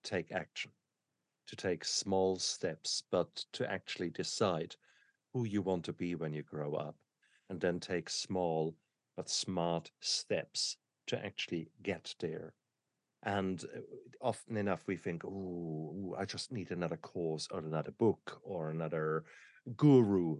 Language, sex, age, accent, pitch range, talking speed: English, male, 50-69, German, 80-100 Hz, 140 wpm